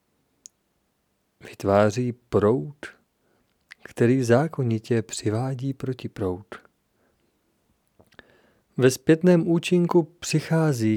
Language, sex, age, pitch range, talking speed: Czech, male, 40-59, 115-145 Hz, 60 wpm